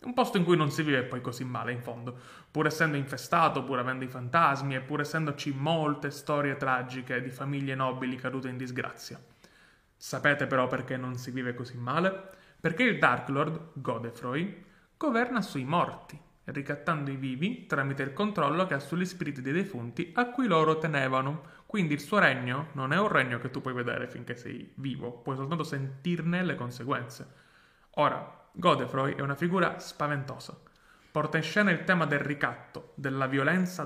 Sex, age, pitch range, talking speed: male, 30-49, 135-170 Hz, 175 wpm